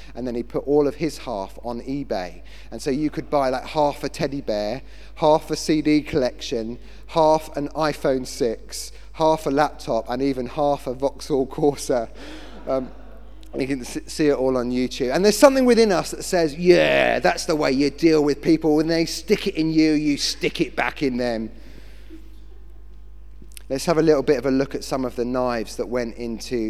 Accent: British